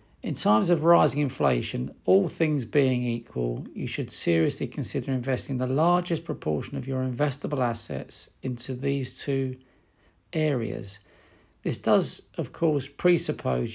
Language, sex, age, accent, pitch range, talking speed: English, male, 50-69, British, 120-145 Hz, 130 wpm